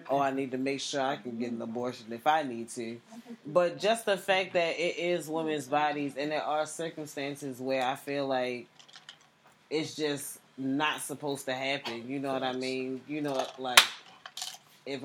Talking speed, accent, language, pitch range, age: 185 wpm, American, English, 130-155 Hz, 20-39